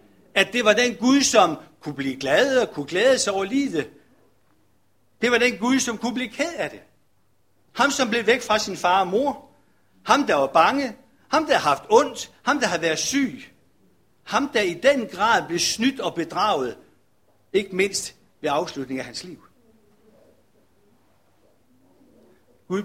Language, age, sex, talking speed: Danish, 60-79, male, 170 wpm